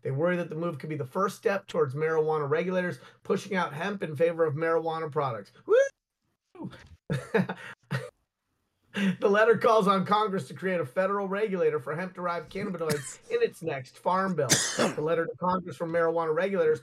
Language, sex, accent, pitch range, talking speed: English, male, American, 155-190 Hz, 170 wpm